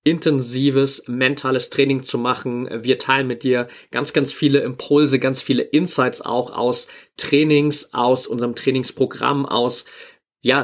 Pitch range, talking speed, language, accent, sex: 120-140 Hz, 135 wpm, German, German, male